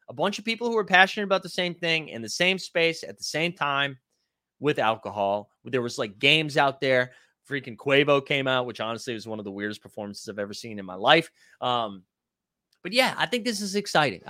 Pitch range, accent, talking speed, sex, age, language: 125-180 Hz, American, 225 wpm, male, 30-49, English